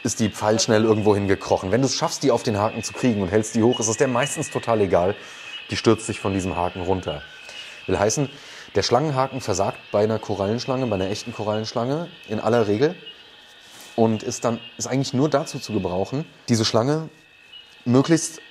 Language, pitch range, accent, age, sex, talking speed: German, 105-135 Hz, German, 30-49, male, 190 wpm